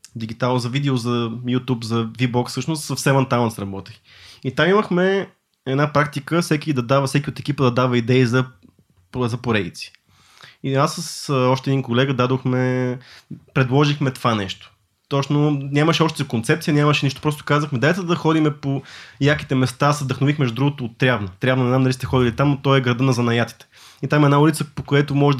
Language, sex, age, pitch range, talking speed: Bulgarian, male, 20-39, 120-145 Hz, 175 wpm